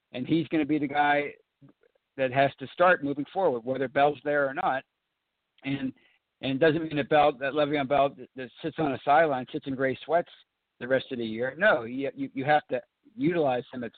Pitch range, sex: 130-150 Hz, male